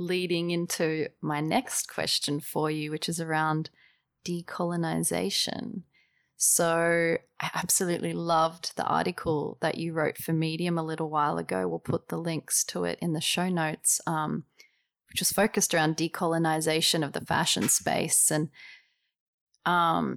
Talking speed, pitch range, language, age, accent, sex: 145 wpm, 160-175 Hz, English, 30-49, Australian, female